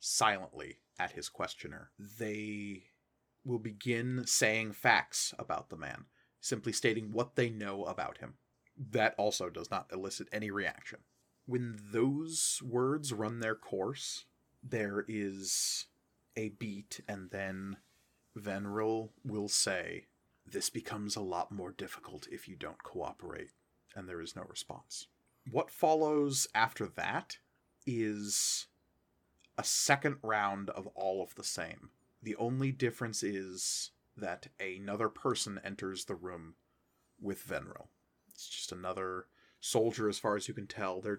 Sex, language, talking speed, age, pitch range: male, English, 135 wpm, 30-49, 100-120 Hz